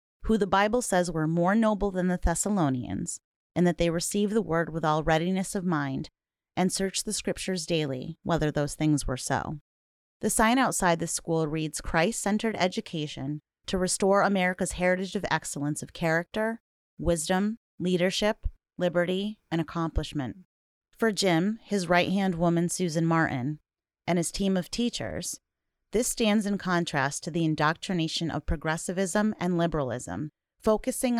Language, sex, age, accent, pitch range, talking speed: English, female, 30-49, American, 160-195 Hz, 145 wpm